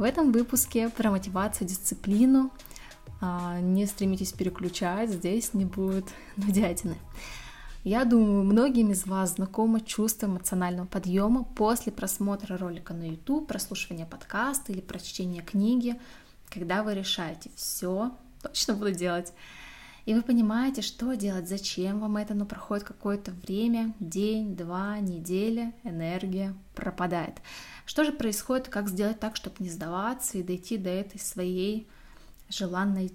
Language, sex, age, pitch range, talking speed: Russian, female, 20-39, 190-230 Hz, 130 wpm